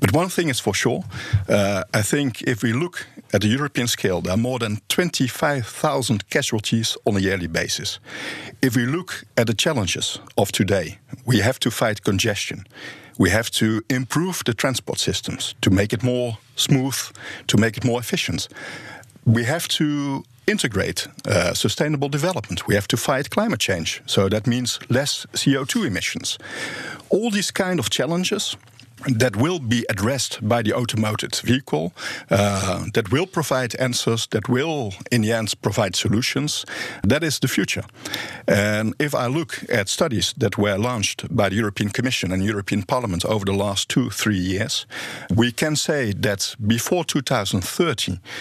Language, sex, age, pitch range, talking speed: Dutch, male, 50-69, 105-135 Hz, 165 wpm